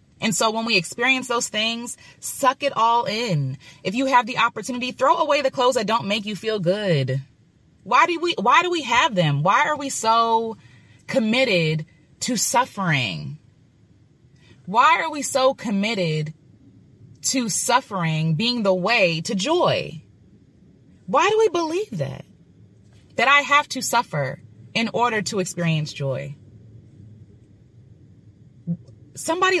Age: 20-39